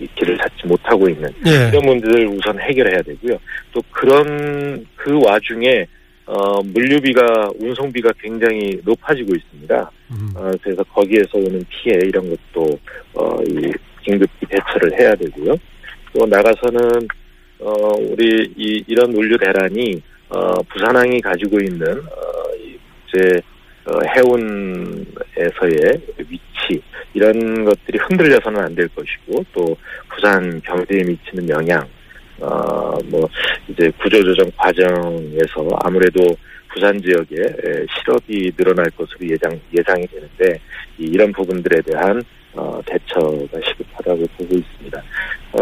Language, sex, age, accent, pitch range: Korean, male, 40-59, native, 95-150 Hz